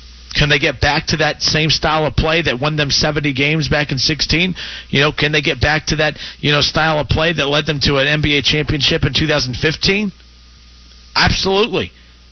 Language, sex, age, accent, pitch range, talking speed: English, male, 40-59, American, 130-160 Hz, 200 wpm